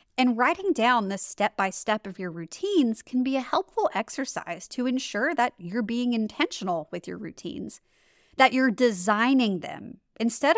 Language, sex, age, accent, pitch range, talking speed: English, female, 30-49, American, 195-275 Hz, 155 wpm